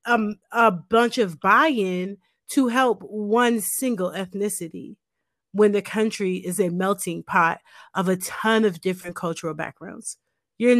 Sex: female